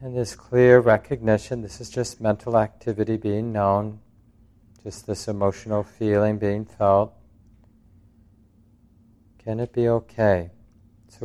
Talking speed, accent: 115 wpm, American